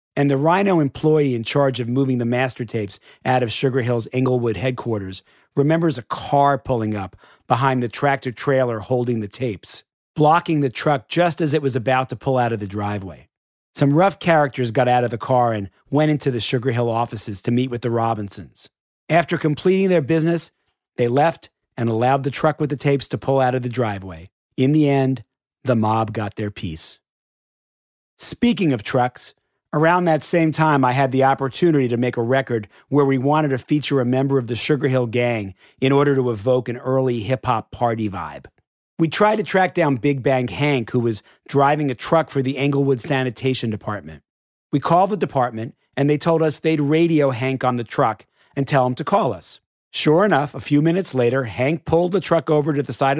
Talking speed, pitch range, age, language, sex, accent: 200 wpm, 120-150 Hz, 40-59, English, male, American